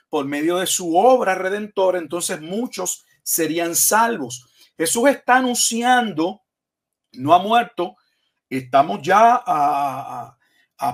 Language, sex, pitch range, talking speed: Spanish, male, 175-230 Hz, 110 wpm